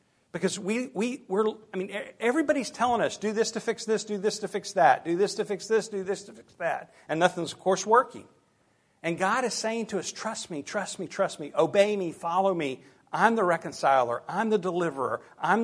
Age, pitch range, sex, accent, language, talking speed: 50-69, 145-195 Hz, male, American, English, 220 wpm